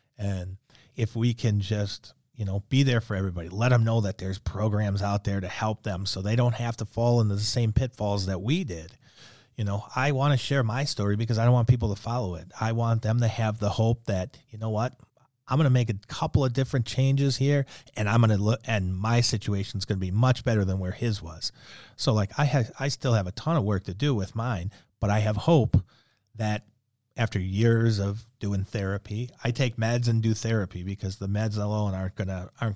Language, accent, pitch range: English, American, 100-125 Hz